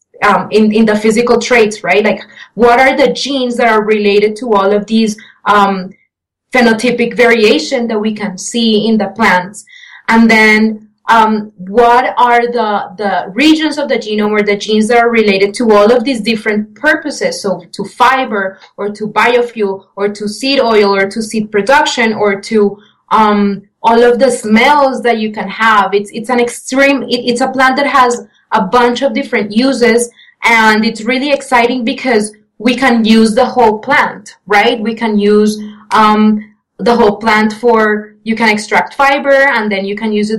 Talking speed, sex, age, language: 180 wpm, female, 20-39, English